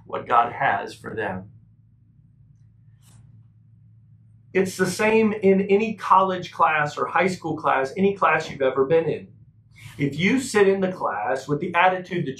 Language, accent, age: English, American, 40-59